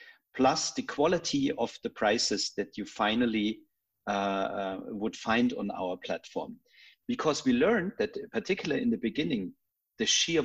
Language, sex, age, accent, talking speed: English, male, 40-59, German, 145 wpm